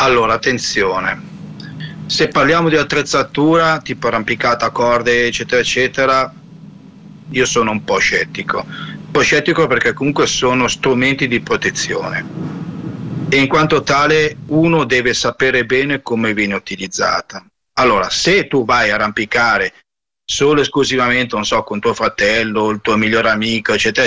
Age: 40-59